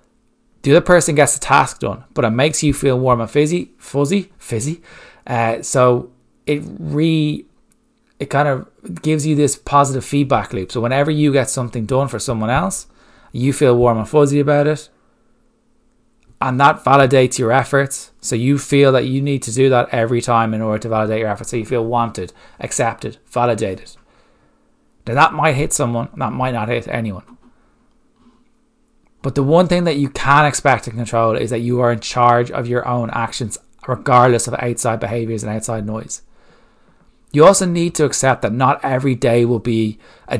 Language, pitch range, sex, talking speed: English, 115-150 Hz, male, 185 wpm